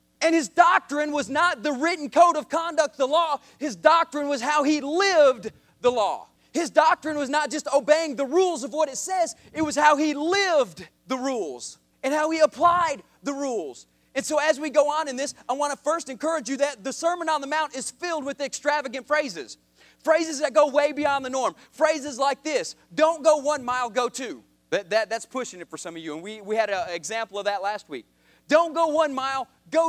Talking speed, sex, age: 215 wpm, male, 30-49